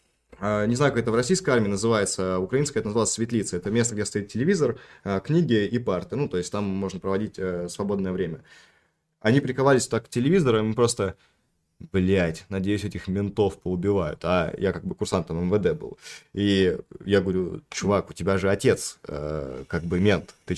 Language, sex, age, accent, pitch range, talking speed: Russian, male, 20-39, native, 95-125 Hz, 180 wpm